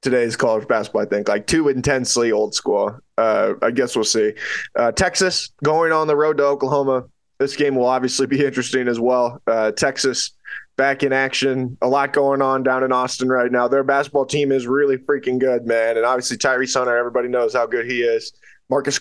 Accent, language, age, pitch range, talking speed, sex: American, English, 20-39, 125-145 Hz, 200 wpm, male